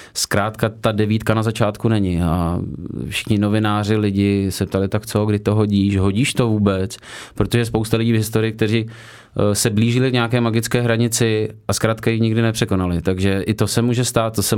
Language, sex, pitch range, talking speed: Czech, male, 100-115 Hz, 185 wpm